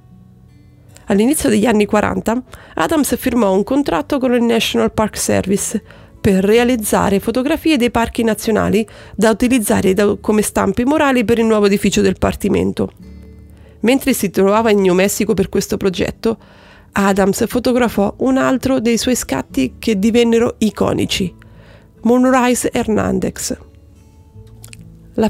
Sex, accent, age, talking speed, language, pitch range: female, native, 30-49, 125 wpm, Italian, 190-240 Hz